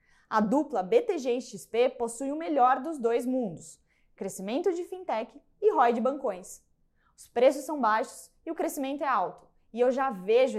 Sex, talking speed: female, 175 wpm